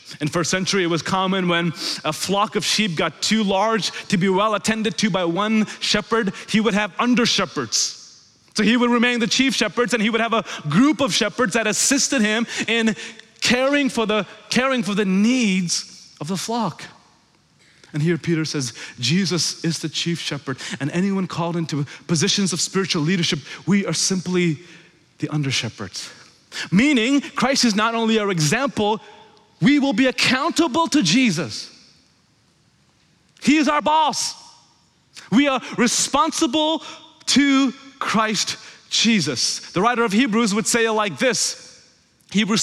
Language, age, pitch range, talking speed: English, 30-49, 170-235 Hz, 155 wpm